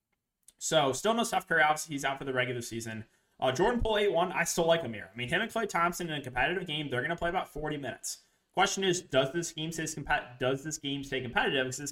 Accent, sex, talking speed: American, male, 255 wpm